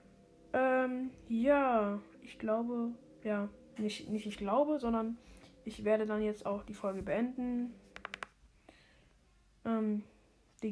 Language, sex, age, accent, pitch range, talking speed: German, female, 10-29, German, 215-250 Hz, 110 wpm